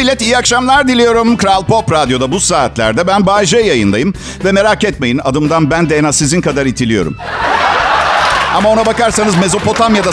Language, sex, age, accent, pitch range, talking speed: Turkish, male, 50-69, native, 155-220 Hz, 155 wpm